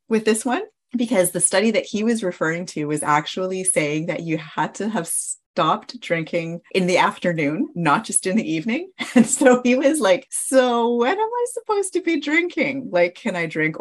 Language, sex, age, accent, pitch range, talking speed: English, female, 30-49, American, 150-210 Hz, 200 wpm